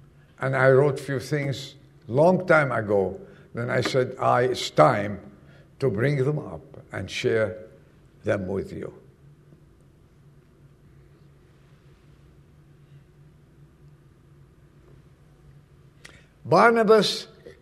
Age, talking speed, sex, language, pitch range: 60-79, 85 wpm, male, English, 125-165 Hz